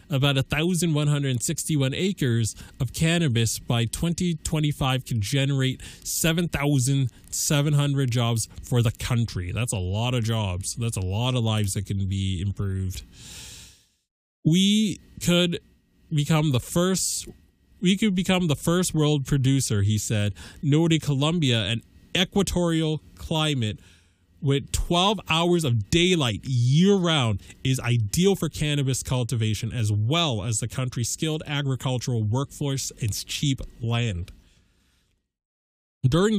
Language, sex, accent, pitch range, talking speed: English, male, American, 115-155 Hz, 115 wpm